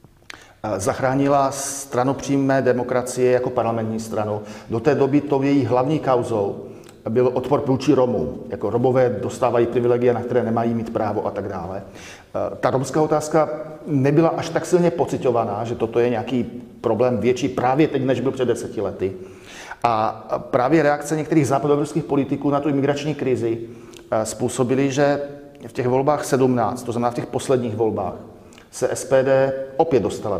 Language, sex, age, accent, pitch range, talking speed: Czech, male, 40-59, native, 115-150 Hz, 150 wpm